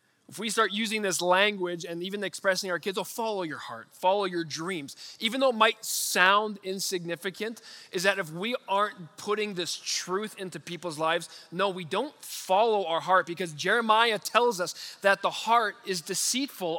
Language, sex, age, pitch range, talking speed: English, male, 20-39, 170-215 Hz, 180 wpm